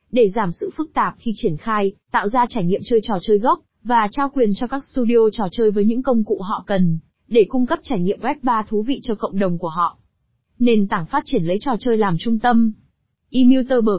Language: Vietnamese